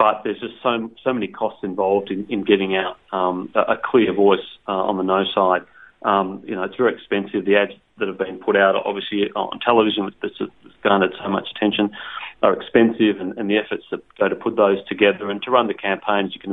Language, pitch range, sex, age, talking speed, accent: English, 95-110 Hz, male, 30-49, 225 wpm, Australian